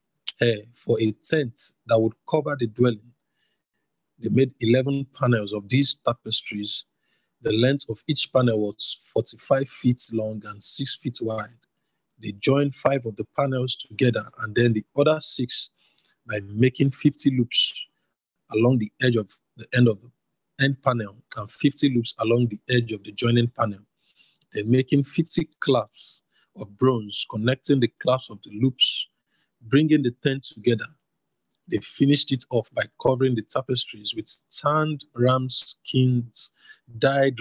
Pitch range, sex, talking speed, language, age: 115-140 Hz, male, 150 wpm, English, 50-69